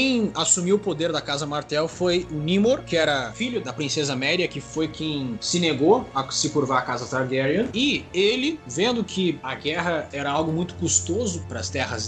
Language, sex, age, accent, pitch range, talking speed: Portuguese, male, 20-39, Brazilian, 130-180 Hz, 195 wpm